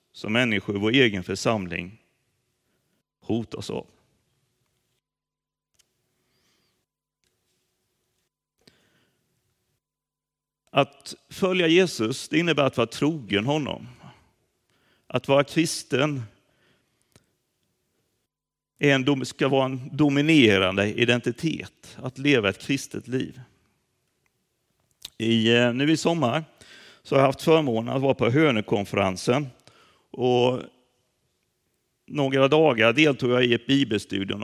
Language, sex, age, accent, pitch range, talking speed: Swedish, male, 40-59, native, 110-140 Hz, 95 wpm